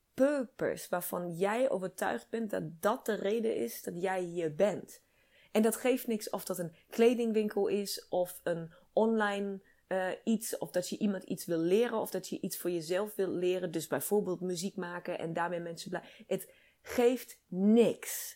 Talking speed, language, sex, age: 175 wpm, Dutch, female, 30-49